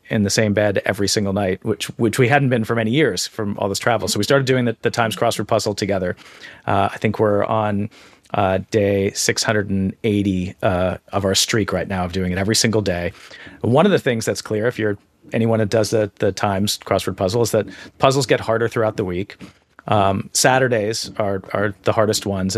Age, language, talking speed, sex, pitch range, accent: 40-59, English, 215 wpm, male, 100-120 Hz, American